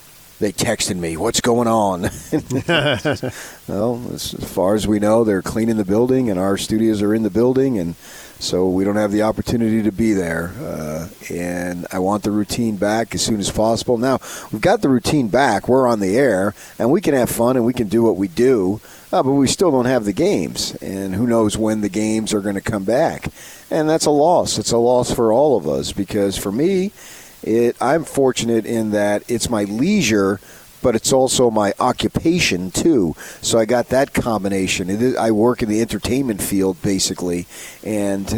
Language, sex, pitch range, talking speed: English, male, 100-120 Hz, 200 wpm